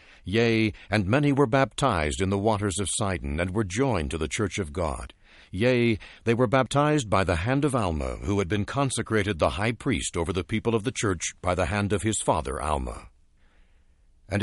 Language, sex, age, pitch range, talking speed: English, male, 60-79, 85-125 Hz, 200 wpm